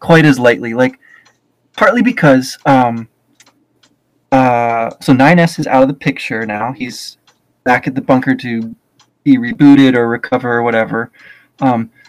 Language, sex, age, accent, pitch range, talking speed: English, male, 20-39, American, 120-160 Hz, 145 wpm